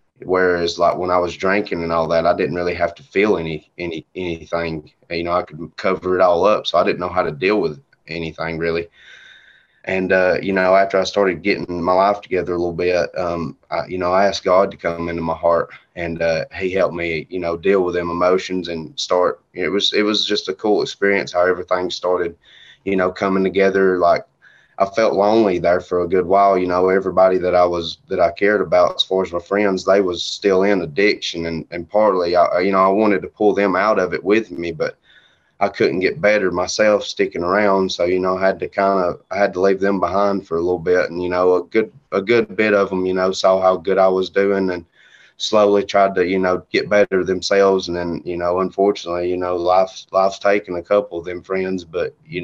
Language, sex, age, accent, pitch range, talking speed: English, male, 20-39, American, 85-95 Hz, 235 wpm